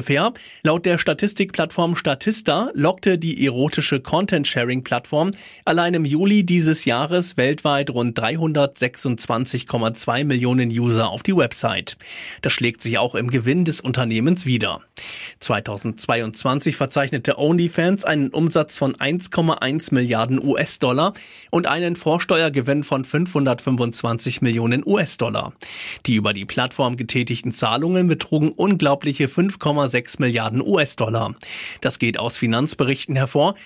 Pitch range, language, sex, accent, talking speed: 125-165 Hz, German, male, German, 110 wpm